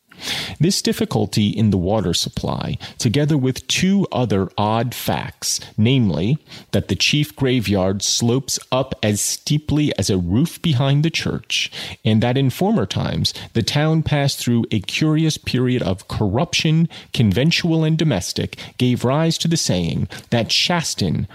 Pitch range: 105-150 Hz